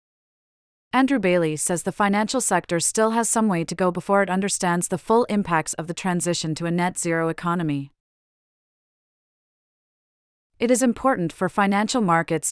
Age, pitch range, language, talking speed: 30-49, 165-210 Hz, English, 150 wpm